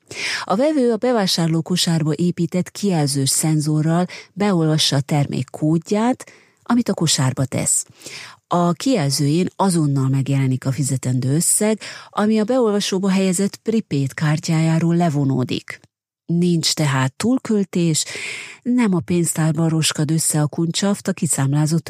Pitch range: 145-185 Hz